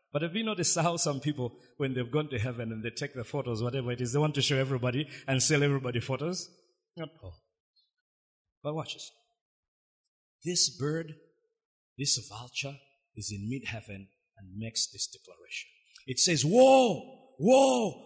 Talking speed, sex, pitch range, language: 160 wpm, male, 130-220 Hz, English